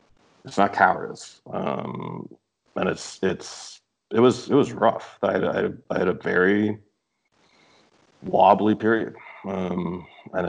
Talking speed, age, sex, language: 125 wpm, 40-59, male, English